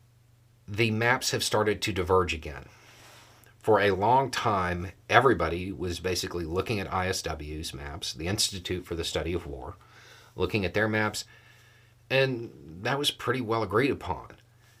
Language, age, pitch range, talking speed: English, 40-59, 95-120 Hz, 145 wpm